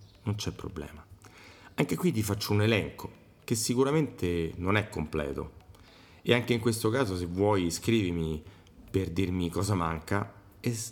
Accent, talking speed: native, 150 wpm